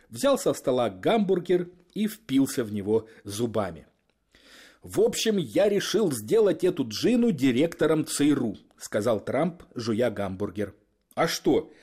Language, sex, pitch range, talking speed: Russian, male, 120-190 Hz, 120 wpm